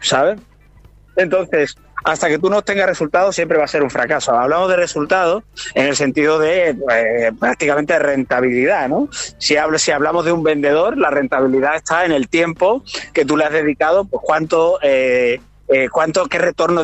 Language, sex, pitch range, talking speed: Spanish, male, 135-175 Hz, 180 wpm